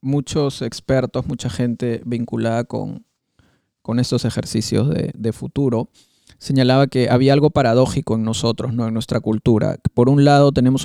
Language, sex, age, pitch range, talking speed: Spanish, male, 30-49, 120-140 Hz, 150 wpm